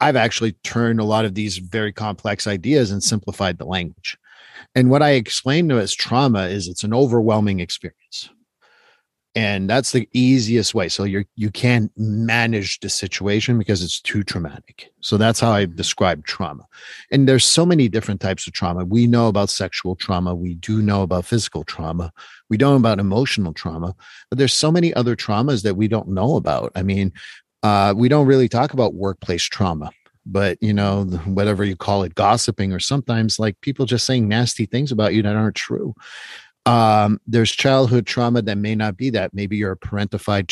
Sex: male